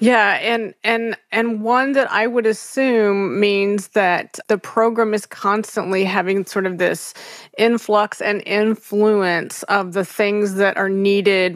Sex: female